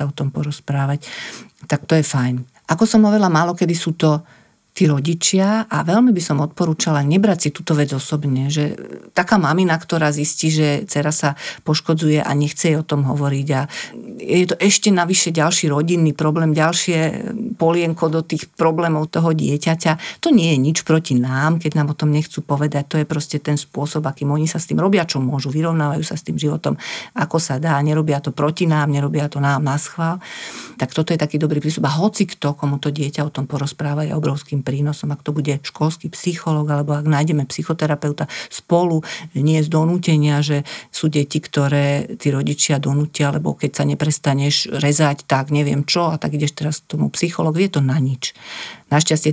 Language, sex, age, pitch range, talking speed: Slovak, female, 50-69, 145-160 Hz, 190 wpm